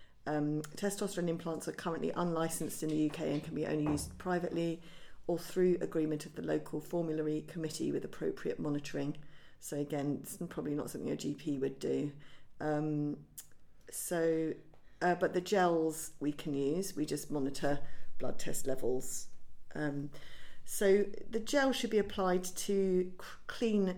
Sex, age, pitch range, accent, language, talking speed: female, 40-59, 150-185 Hz, British, English, 155 wpm